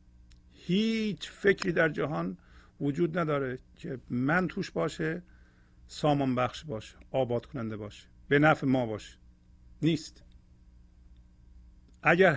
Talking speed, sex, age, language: 105 wpm, male, 50-69, Persian